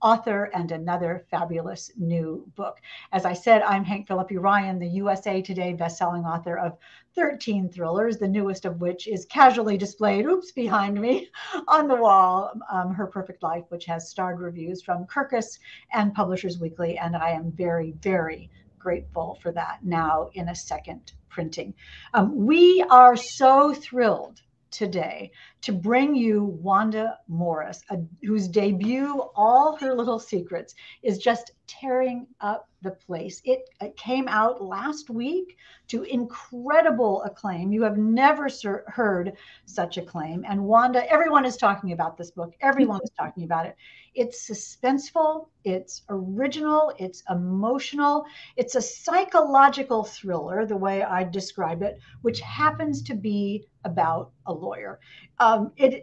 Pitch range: 180-250 Hz